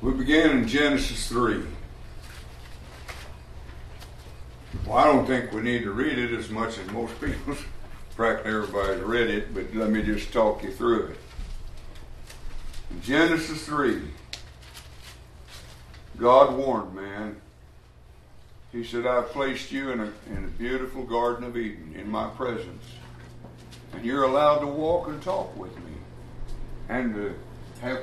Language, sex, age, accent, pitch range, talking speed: English, male, 60-79, American, 105-155 Hz, 140 wpm